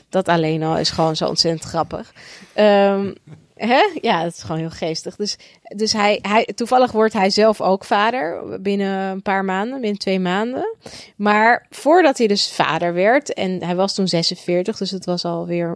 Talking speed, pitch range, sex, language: 185 wpm, 180-225 Hz, female, Dutch